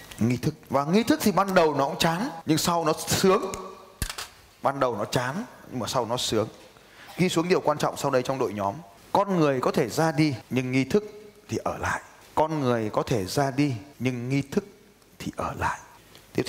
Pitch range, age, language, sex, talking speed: 115-175 Hz, 20-39, Vietnamese, male, 215 wpm